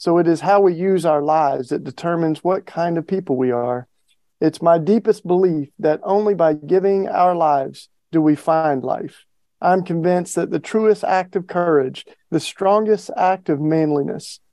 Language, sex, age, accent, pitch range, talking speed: English, male, 40-59, American, 155-190 Hz, 180 wpm